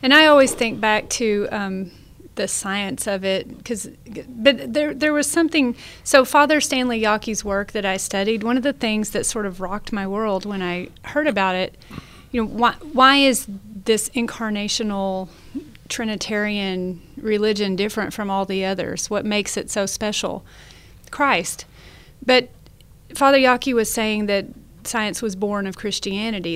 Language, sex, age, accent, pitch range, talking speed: English, female, 30-49, American, 195-240 Hz, 160 wpm